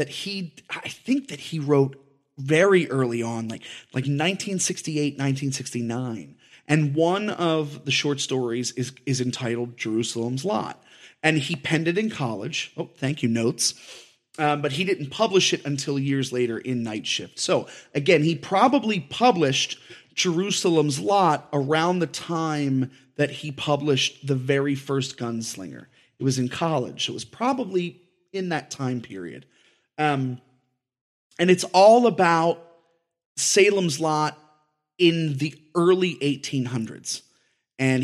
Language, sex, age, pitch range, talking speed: English, male, 30-49, 130-180 Hz, 140 wpm